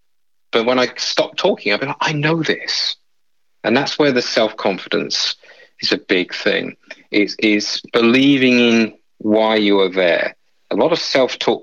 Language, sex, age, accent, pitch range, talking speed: English, male, 40-59, British, 100-120 Hz, 165 wpm